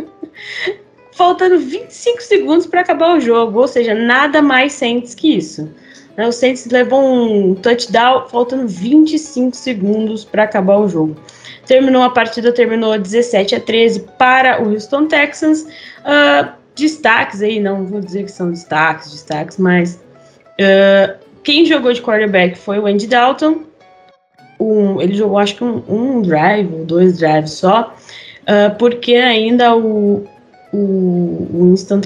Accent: Brazilian